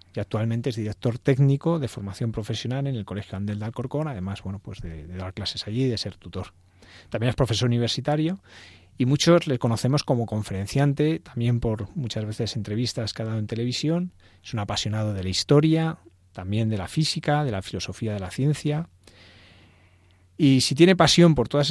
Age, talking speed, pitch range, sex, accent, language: 30-49, 180 wpm, 95-125 Hz, male, Spanish, Spanish